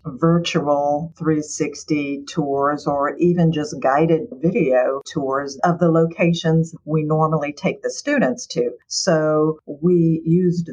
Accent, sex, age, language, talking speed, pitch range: American, female, 50-69, English, 115 wpm, 145-170 Hz